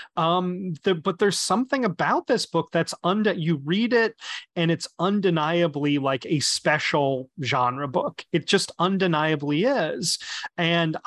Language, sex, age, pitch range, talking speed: English, male, 30-49, 140-175 Hz, 135 wpm